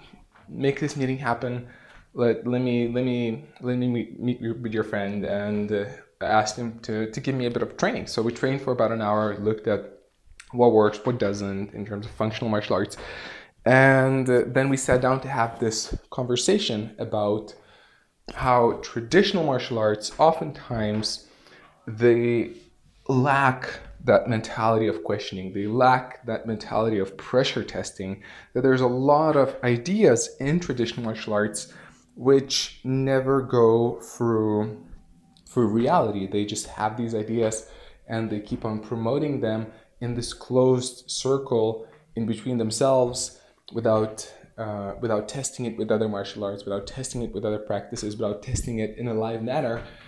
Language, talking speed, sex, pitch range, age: English, 160 wpm, male, 110-130 Hz, 20-39